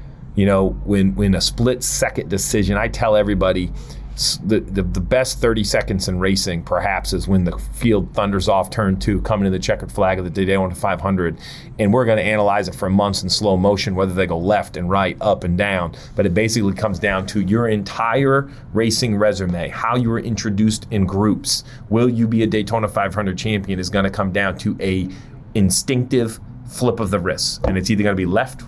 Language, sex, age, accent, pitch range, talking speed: English, male, 30-49, American, 95-115 Hz, 205 wpm